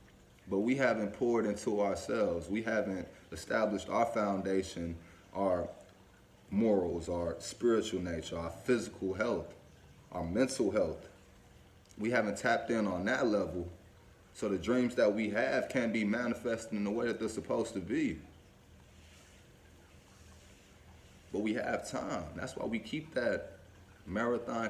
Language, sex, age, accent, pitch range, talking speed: English, male, 20-39, American, 95-105 Hz, 135 wpm